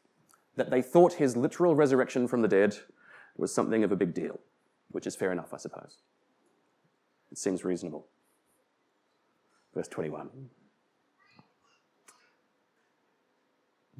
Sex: male